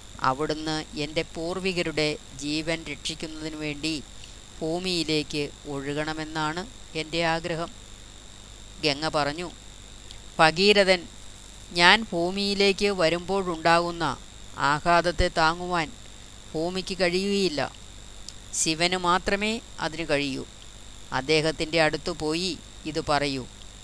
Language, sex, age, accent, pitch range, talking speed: Malayalam, female, 20-39, native, 115-170 Hz, 75 wpm